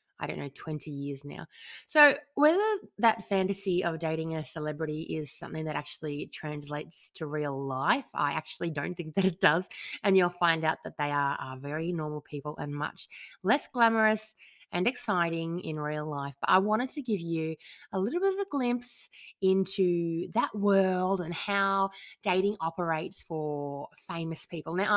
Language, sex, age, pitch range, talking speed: English, female, 30-49, 155-220 Hz, 175 wpm